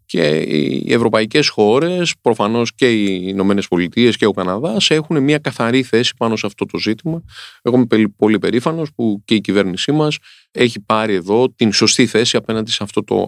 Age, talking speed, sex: 30-49, 180 wpm, male